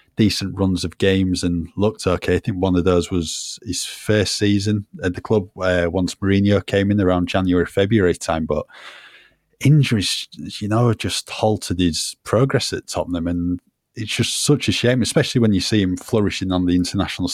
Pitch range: 90-100 Hz